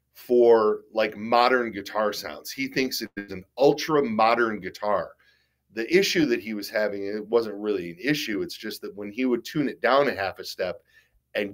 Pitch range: 105-130 Hz